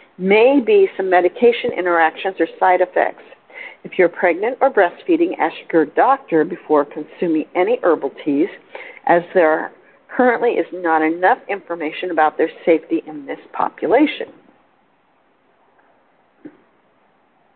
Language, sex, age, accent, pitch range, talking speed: English, female, 50-69, American, 170-260 Hz, 115 wpm